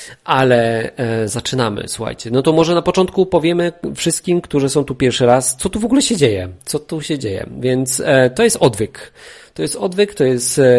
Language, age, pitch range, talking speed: Polish, 40-59, 115-145 Hz, 190 wpm